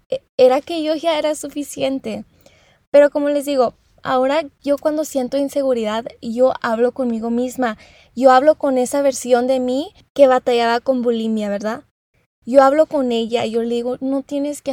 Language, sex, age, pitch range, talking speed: English, female, 20-39, 240-280 Hz, 170 wpm